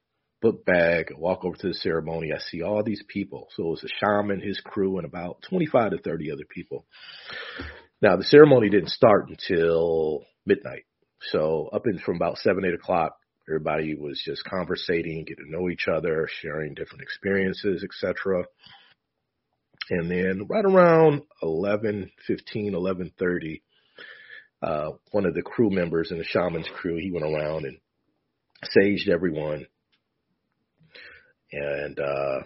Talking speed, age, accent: 145 wpm, 40-59, American